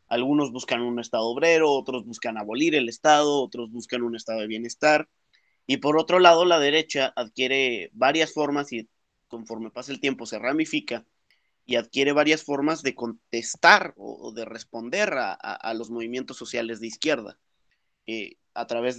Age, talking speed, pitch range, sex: 30-49, 165 wpm, 115-135 Hz, male